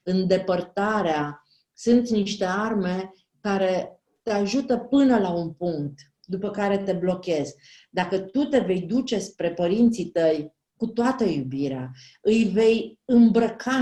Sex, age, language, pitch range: female, 40-59, Romanian, 170-235 Hz